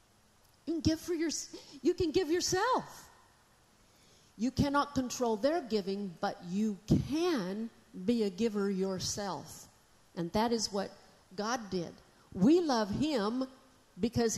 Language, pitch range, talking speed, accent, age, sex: English, 190-255 Hz, 115 wpm, American, 50-69, female